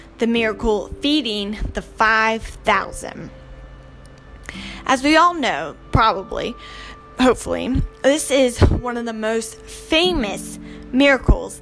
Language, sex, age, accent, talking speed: English, female, 10-29, American, 100 wpm